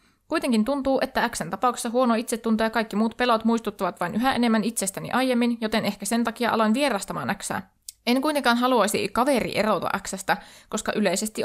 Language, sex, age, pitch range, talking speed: Finnish, female, 20-39, 205-245 Hz, 170 wpm